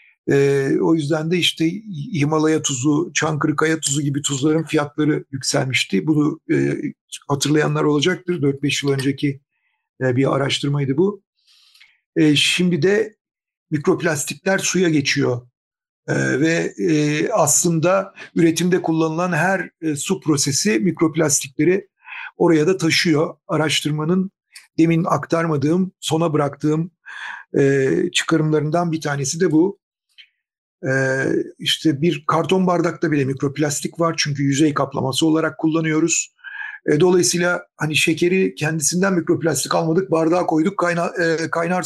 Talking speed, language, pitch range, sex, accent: 100 wpm, Turkish, 145-175 Hz, male, native